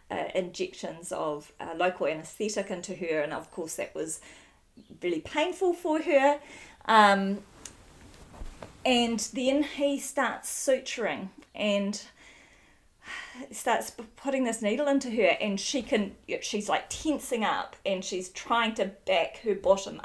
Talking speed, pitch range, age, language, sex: 130 wpm, 190-270 Hz, 40-59, English, female